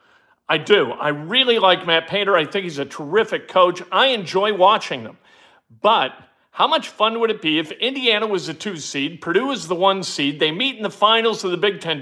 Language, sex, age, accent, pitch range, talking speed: English, male, 50-69, American, 185-265 Hz, 220 wpm